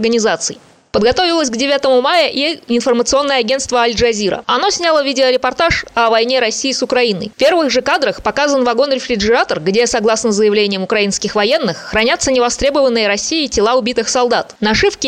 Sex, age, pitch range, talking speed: female, 20-39, 215-270 Hz, 140 wpm